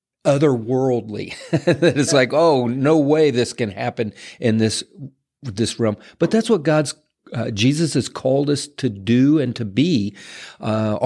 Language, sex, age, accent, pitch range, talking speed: English, male, 50-69, American, 105-130 Hz, 150 wpm